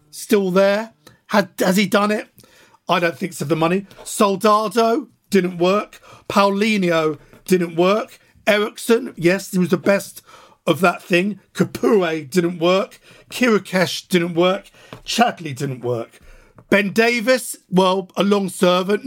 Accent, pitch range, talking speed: British, 170-205 Hz, 135 wpm